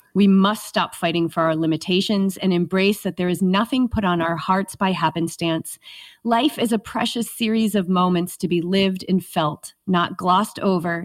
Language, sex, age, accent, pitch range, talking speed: English, female, 30-49, American, 170-205 Hz, 185 wpm